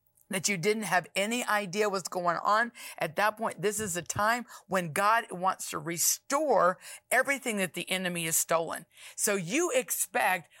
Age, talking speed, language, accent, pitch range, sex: 50-69, 170 wpm, English, American, 180-210 Hz, female